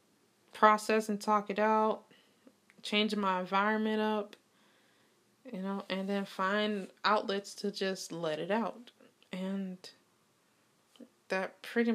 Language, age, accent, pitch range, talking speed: English, 20-39, American, 185-250 Hz, 115 wpm